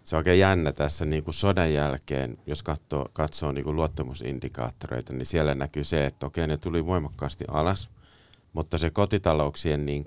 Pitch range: 70-85 Hz